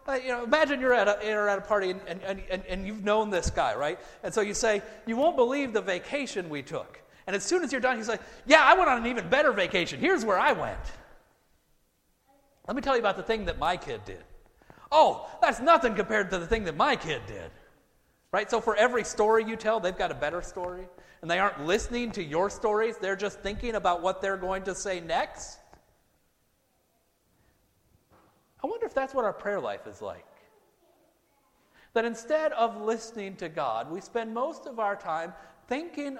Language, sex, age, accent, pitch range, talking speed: English, male, 40-59, American, 190-275 Hz, 205 wpm